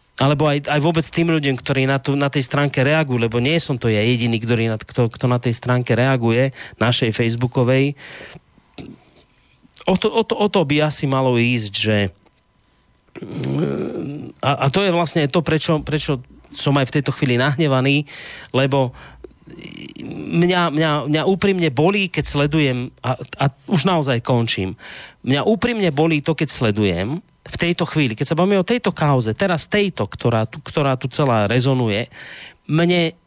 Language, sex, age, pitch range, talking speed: Slovak, male, 30-49, 125-165 Hz, 160 wpm